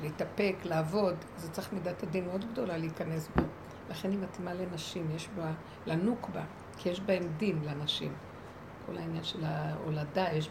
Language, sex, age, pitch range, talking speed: Hebrew, female, 60-79, 170-230 Hz, 155 wpm